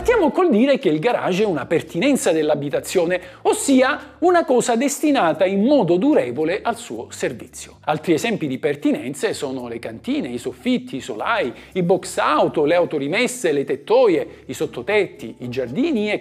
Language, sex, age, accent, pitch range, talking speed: Italian, male, 50-69, native, 195-325 Hz, 160 wpm